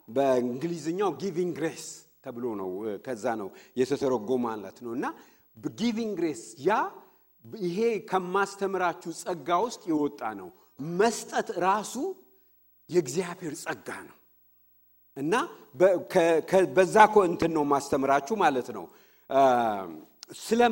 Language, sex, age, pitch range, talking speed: English, male, 50-69, 140-225 Hz, 80 wpm